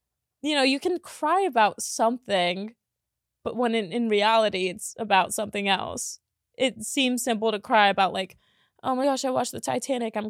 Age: 20-39